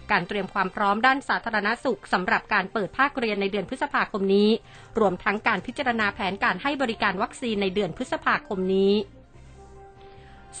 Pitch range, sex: 205-245 Hz, female